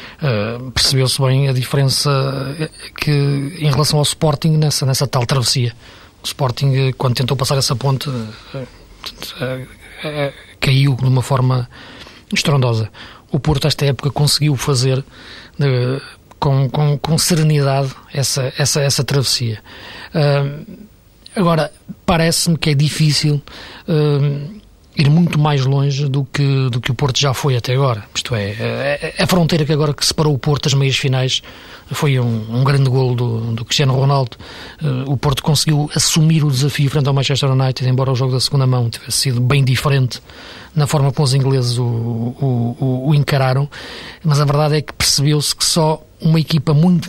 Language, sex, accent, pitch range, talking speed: Portuguese, male, Portuguese, 130-150 Hz, 165 wpm